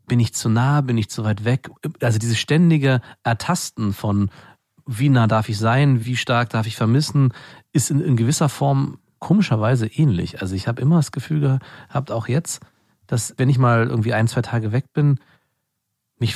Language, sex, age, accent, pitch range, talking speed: German, male, 40-59, German, 105-130 Hz, 185 wpm